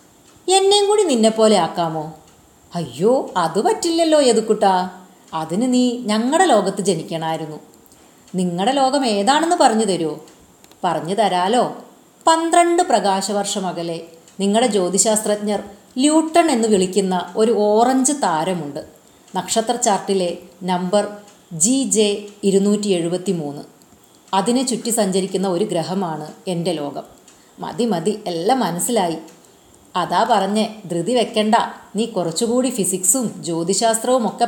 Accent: native